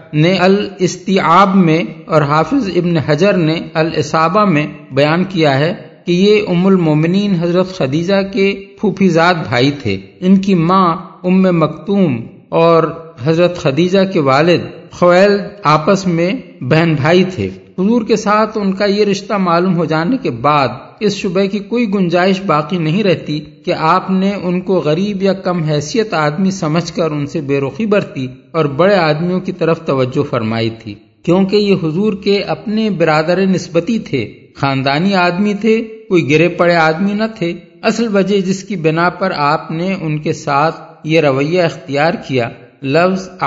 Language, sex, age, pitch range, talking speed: Urdu, male, 50-69, 155-195 Hz, 165 wpm